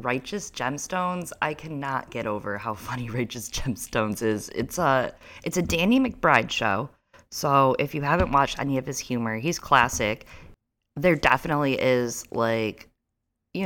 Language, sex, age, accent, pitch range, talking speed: English, female, 20-39, American, 115-155 Hz, 150 wpm